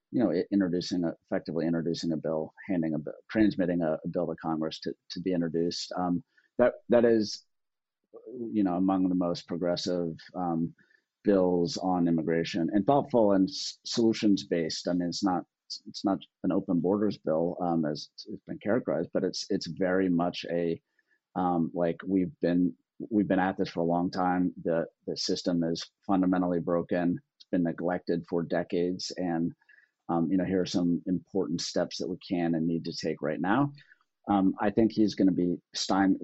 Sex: male